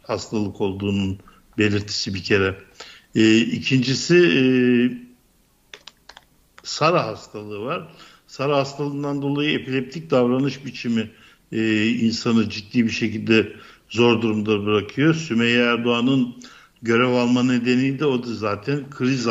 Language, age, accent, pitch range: Turkish, 60-79, native, 110-130 Hz